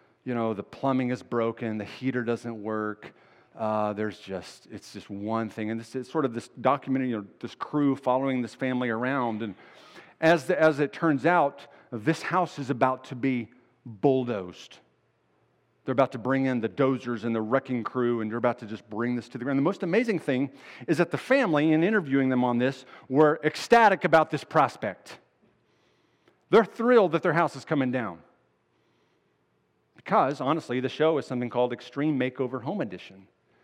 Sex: male